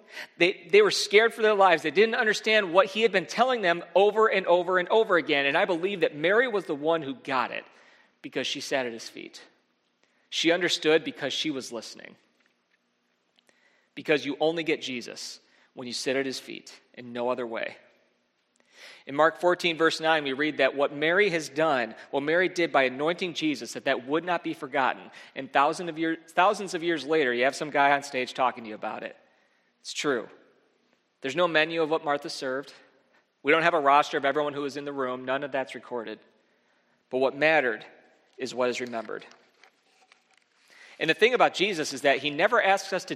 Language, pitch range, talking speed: English, 135-185 Hz, 200 wpm